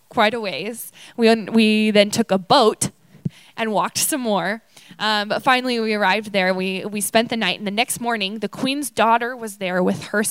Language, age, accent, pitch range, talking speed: English, 10-29, American, 195-240 Hz, 205 wpm